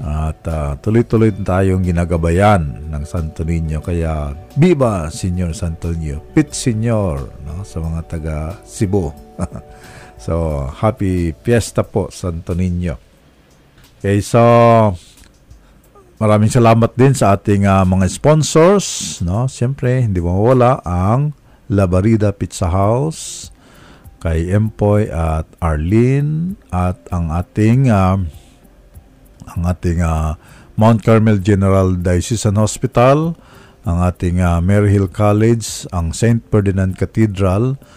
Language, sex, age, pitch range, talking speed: Filipino, male, 50-69, 90-115 Hz, 110 wpm